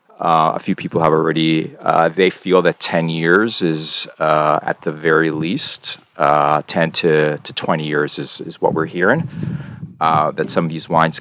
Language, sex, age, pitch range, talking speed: English, male, 40-59, 80-115 Hz, 185 wpm